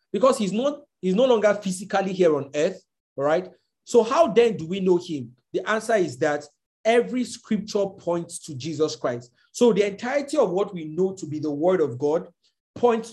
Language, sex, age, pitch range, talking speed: English, male, 50-69, 170-225 Hz, 195 wpm